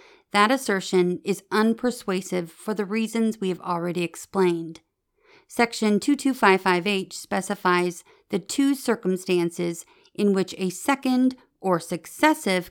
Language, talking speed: English, 110 wpm